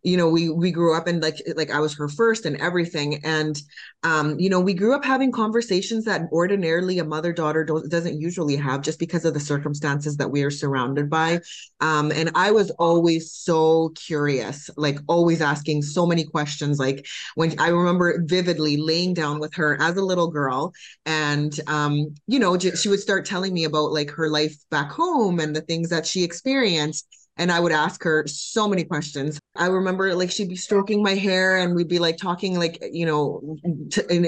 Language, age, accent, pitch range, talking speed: English, 20-39, American, 150-175 Hz, 200 wpm